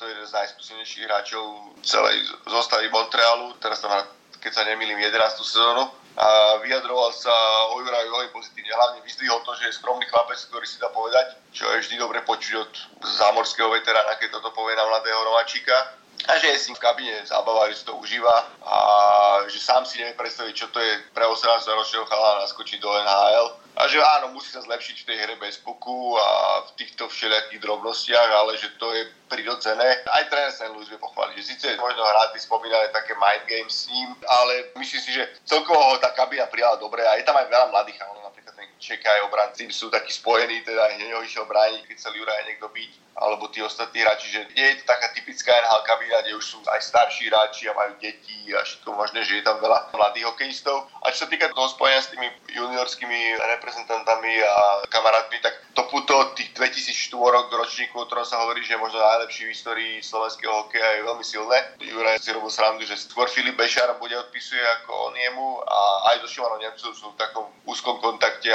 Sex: male